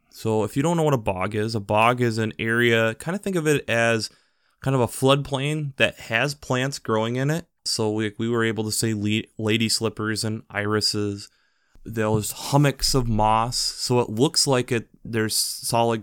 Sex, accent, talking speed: male, American, 190 wpm